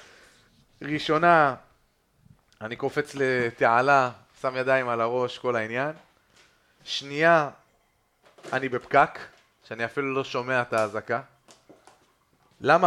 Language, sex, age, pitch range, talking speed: Hebrew, male, 30-49, 130-185 Hz, 95 wpm